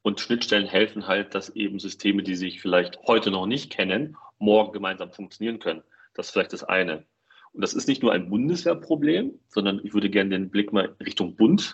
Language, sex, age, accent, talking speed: German, male, 40-59, German, 200 wpm